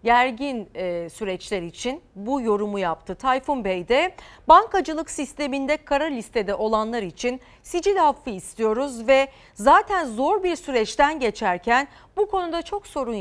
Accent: native